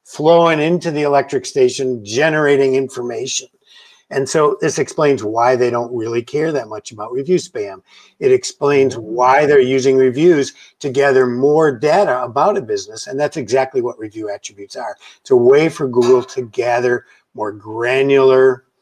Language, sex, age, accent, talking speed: English, male, 50-69, American, 160 wpm